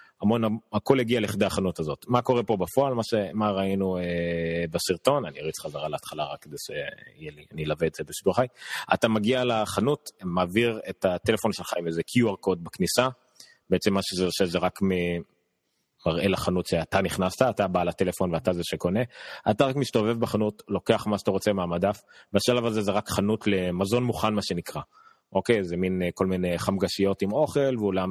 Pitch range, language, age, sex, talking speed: 90-110 Hz, Hebrew, 30-49, male, 175 wpm